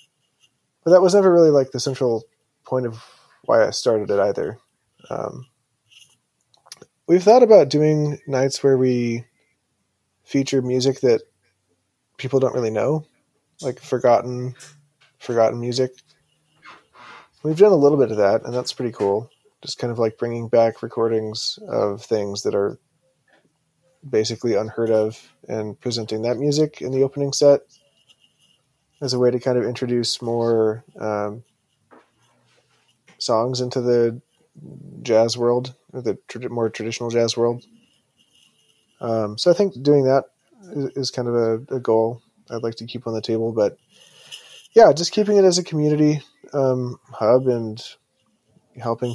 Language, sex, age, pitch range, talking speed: English, male, 20-39, 115-135 Hz, 145 wpm